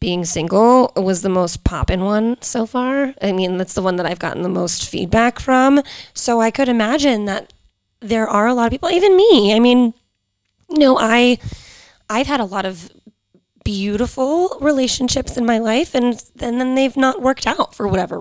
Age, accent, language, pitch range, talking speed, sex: 20-39, American, English, 190-245 Hz, 180 wpm, female